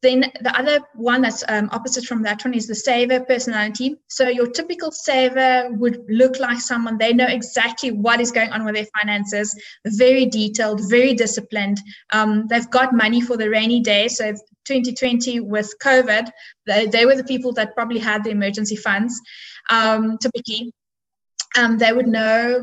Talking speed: 170 wpm